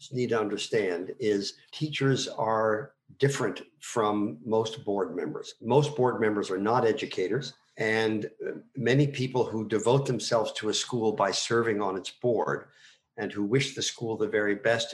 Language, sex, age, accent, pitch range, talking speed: English, male, 50-69, American, 110-135 Hz, 155 wpm